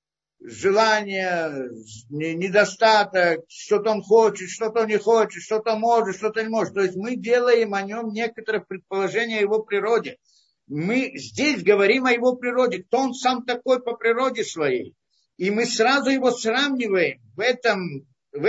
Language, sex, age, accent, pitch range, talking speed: Russian, male, 50-69, native, 195-250 Hz, 145 wpm